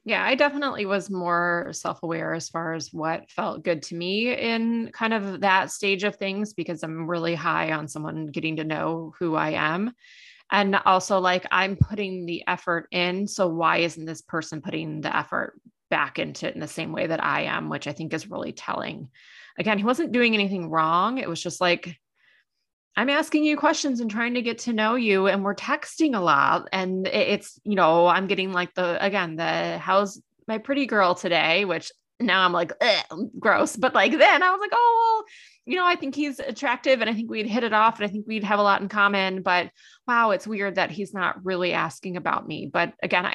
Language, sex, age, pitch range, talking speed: English, female, 20-39, 170-230 Hz, 210 wpm